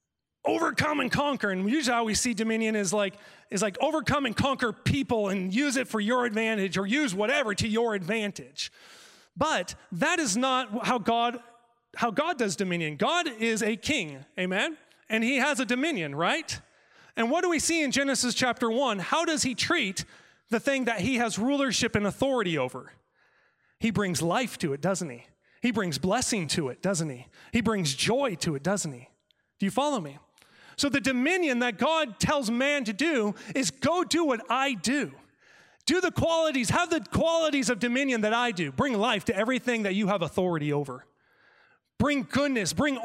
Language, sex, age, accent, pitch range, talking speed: English, male, 30-49, American, 205-270 Hz, 190 wpm